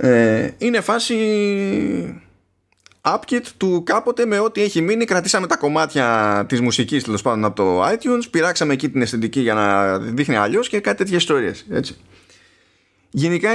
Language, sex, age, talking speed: Greek, male, 20-39, 150 wpm